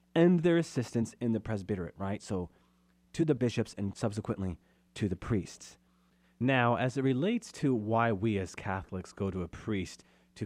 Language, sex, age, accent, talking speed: English, male, 40-59, American, 170 wpm